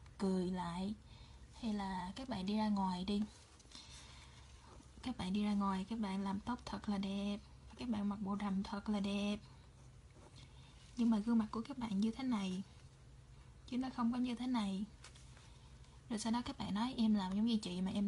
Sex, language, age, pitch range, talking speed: female, Vietnamese, 20-39, 185-220 Hz, 200 wpm